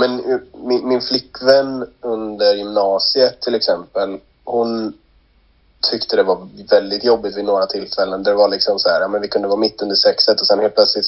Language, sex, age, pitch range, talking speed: Swedish, male, 30-49, 95-120 Hz, 190 wpm